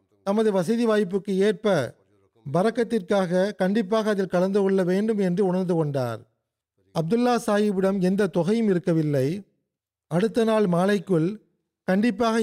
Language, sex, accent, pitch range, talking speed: Tamil, male, native, 160-210 Hz, 105 wpm